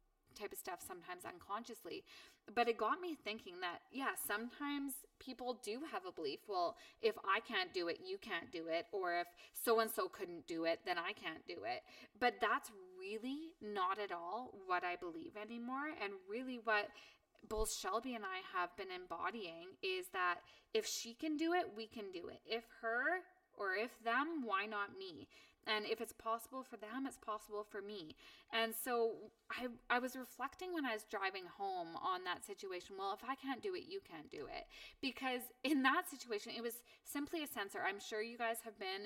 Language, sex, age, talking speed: English, female, 20-39, 200 wpm